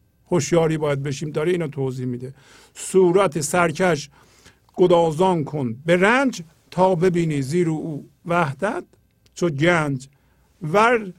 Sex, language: male, Persian